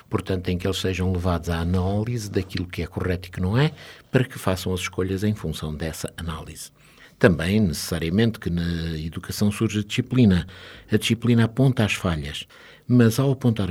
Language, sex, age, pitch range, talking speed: Portuguese, male, 60-79, 90-115 Hz, 180 wpm